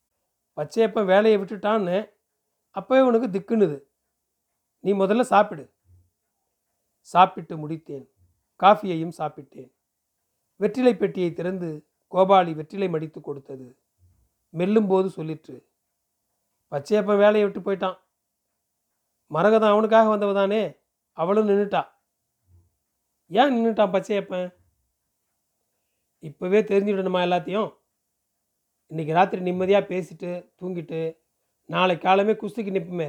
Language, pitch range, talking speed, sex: Tamil, 150-205 Hz, 85 wpm, male